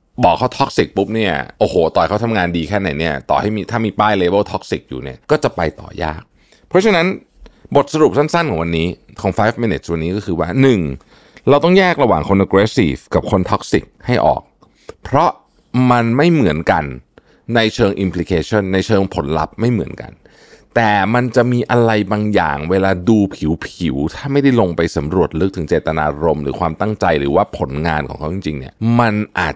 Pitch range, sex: 85-120 Hz, male